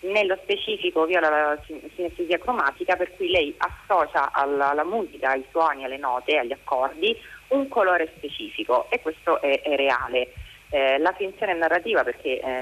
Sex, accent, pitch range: female, native, 145-195 Hz